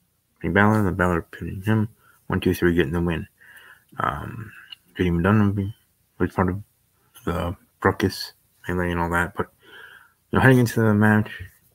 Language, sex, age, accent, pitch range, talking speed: English, male, 20-39, American, 90-105 Hz, 150 wpm